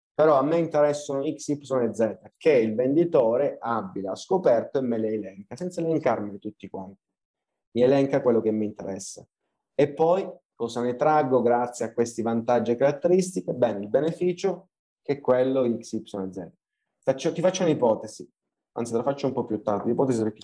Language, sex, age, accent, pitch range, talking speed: Italian, male, 30-49, native, 115-145 Hz, 180 wpm